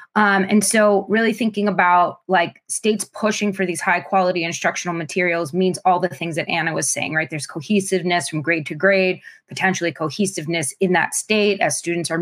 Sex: female